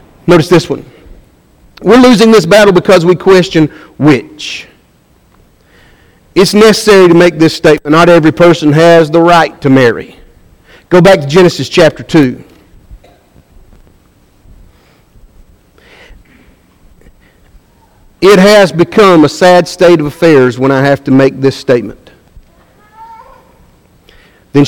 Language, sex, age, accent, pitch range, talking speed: English, male, 50-69, American, 140-180 Hz, 115 wpm